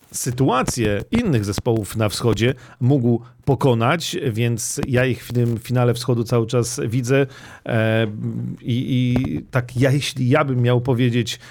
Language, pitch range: Polish, 115-130 Hz